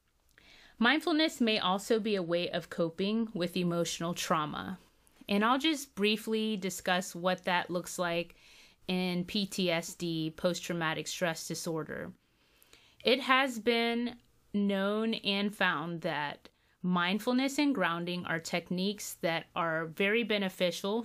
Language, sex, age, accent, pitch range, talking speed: English, female, 30-49, American, 170-200 Hz, 115 wpm